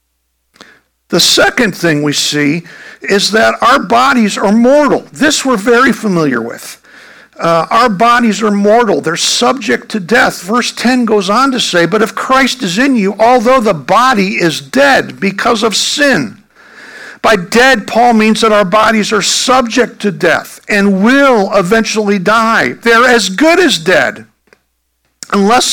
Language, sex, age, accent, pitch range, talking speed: English, male, 60-79, American, 180-235 Hz, 155 wpm